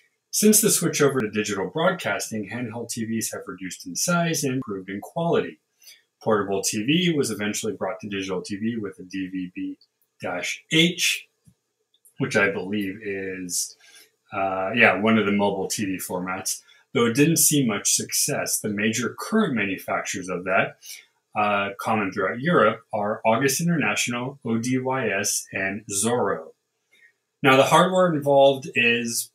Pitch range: 100-140 Hz